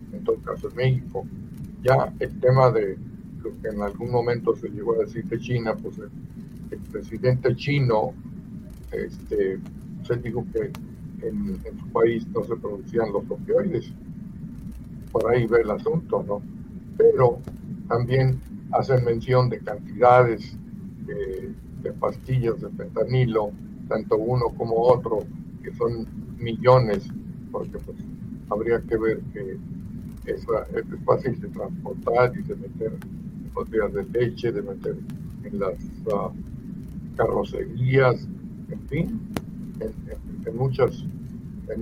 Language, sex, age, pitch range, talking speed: Spanish, male, 50-69, 115-170 Hz, 130 wpm